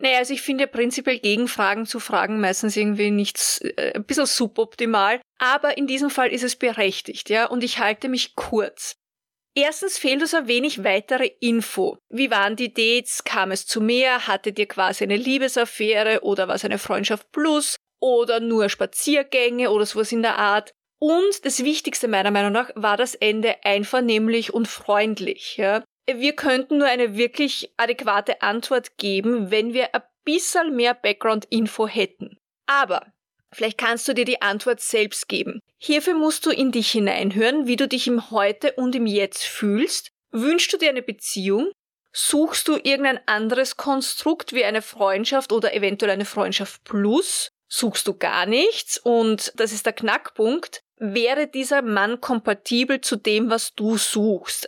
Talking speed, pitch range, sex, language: 165 wpm, 210-270 Hz, female, German